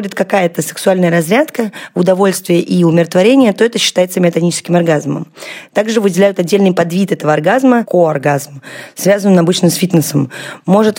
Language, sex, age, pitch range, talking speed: Russian, female, 20-39, 165-200 Hz, 125 wpm